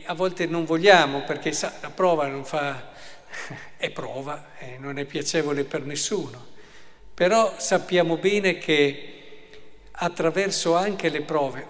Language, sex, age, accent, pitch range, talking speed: Italian, male, 50-69, native, 145-180 Hz, 135 wpm